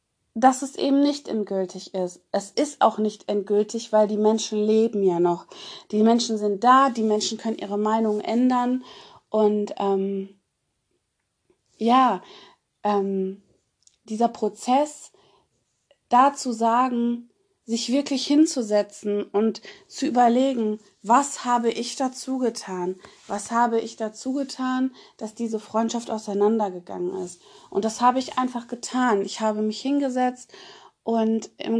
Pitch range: 205-255 Hz